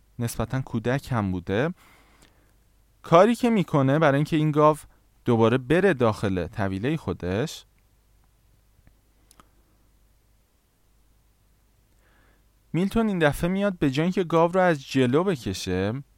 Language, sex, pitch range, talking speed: Persian, male, 105-155 Hz, 105 wpm